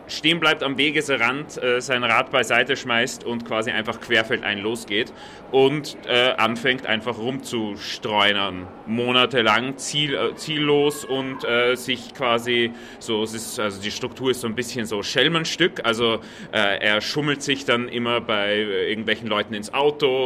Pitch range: 110-130 Hz